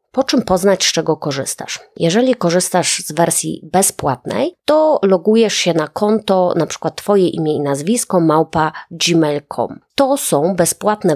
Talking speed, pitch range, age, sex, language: 140 wpm, 160-205 Hz, 20-39, female, Polish